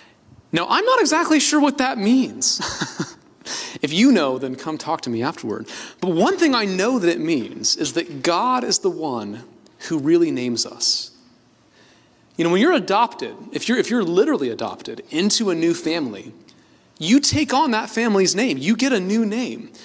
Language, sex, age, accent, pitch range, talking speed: English, male, 30-49, American, 155-250 Hz, 180 wpm